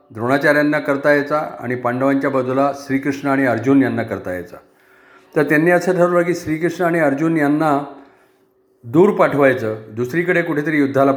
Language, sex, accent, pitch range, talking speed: Marathi, male, native, 125-145 Hz, 140 wpm